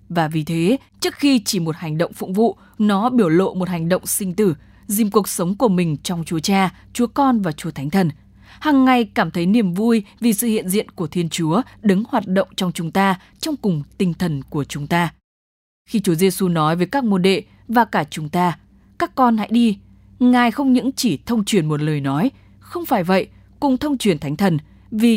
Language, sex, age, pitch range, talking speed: English, female, 20-39, 165-225 Hz, 220 wpm